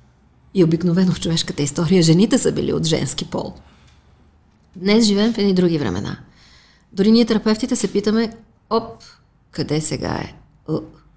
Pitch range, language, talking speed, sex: 165-225 Hz, Bulgarian, 145 wpm, female